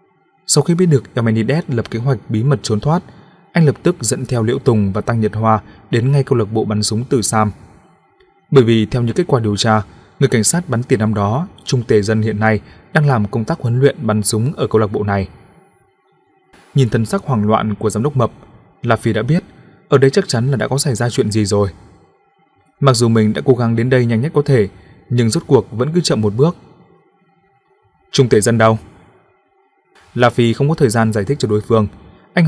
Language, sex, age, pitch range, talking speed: Vietnamese, male, 20-39, 110-140 Hz, 230 wpm